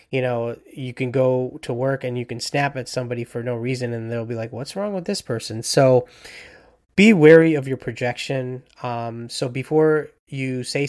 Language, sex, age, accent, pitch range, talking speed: English, male, 20-39, American, 120-140 Hz, 200 wpm